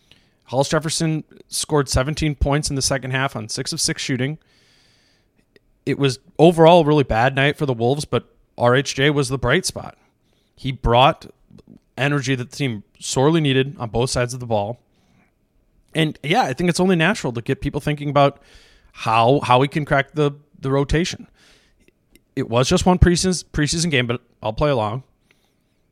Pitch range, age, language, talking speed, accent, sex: 120-150 Hz, 20-39, English, 175 wpm, American, male